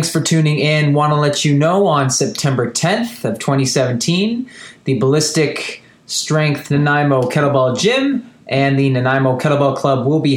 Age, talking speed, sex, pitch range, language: 20-39, 155 wpm, male, 130-155 Hz, English